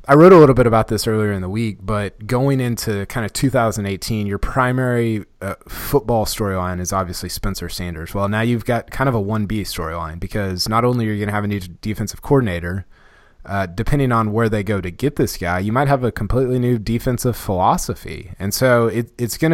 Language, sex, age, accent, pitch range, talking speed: English, male, 20-39, American, 95-120 Hz, 215 wpm